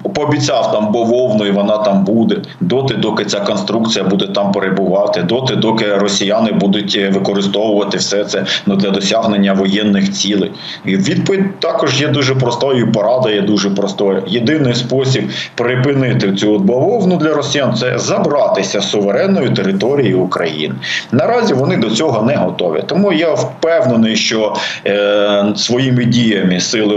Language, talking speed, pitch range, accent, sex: Ukrainian, 140 wpm, 100-120 Hz, native, male